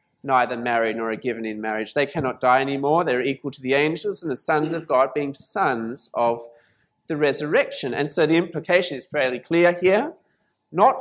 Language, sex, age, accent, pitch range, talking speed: English, male, 30-49, Australian, 130-175 Hz, 195 wpm